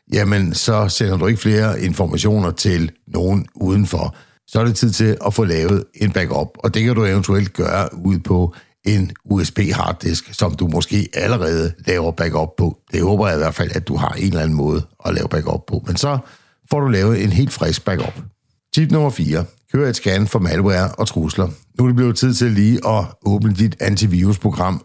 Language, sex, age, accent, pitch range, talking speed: Danish, male, 60-79, native, 90-110 Hz, 205 wpm